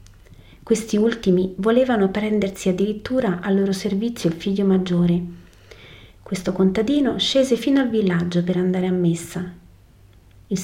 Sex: female